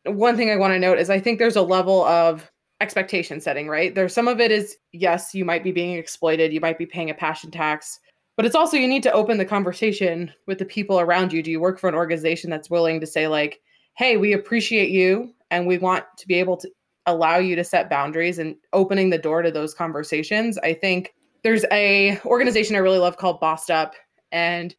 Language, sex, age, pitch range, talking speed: English, female, 20-39, 165-200 Hz, 230 wpm